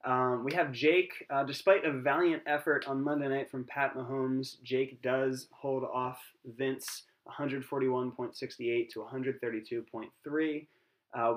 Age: 20-39